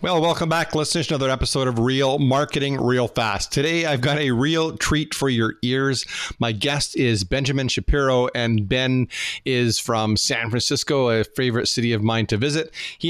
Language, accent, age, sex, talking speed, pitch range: English, American, 40-59, male, 185 wpm, 110-135 Hz